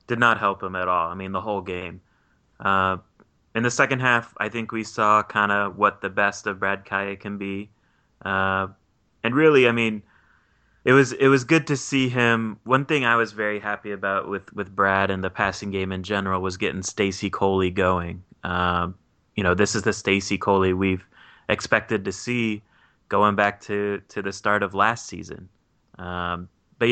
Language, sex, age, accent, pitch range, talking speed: English, male, 20-39, American, 95-105 Hz, 195 wpm